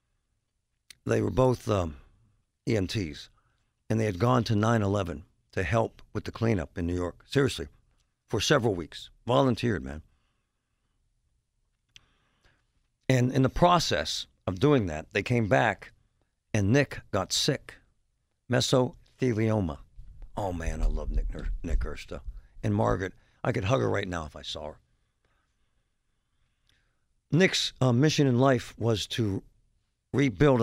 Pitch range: 90-125 Hz